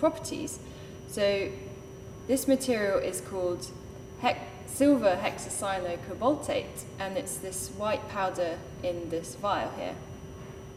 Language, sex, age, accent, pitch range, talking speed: English, female, 10-29, British, 165-215 Hz, 110 wpm